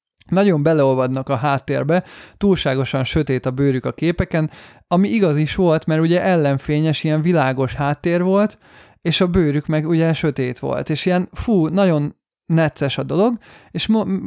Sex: male